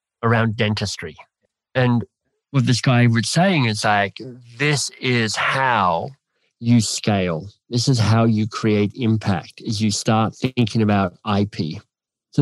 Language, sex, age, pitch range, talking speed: English, male, 50-69, 110-130 Hz, 135 wpm